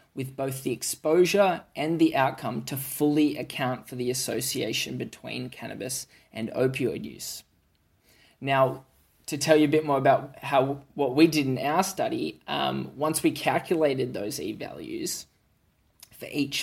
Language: English